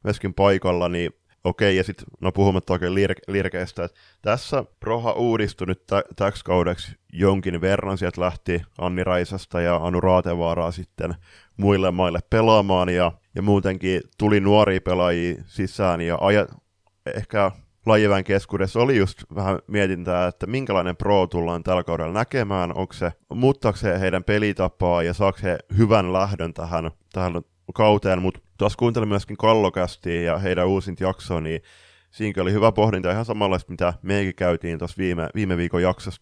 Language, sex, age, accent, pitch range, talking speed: Finnish, male, 20-39, native, 90-105 Hz, 145 wpm